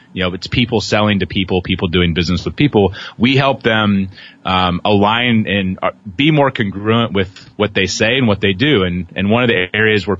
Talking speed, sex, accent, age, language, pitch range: 210 wpm, male, American, 30-49, English, 95-115 Hz